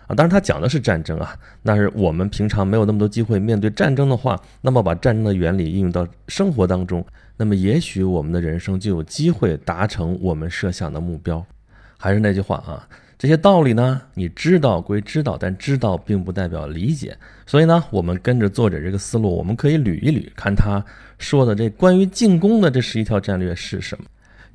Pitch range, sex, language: 95-125 Hz, male, Chinese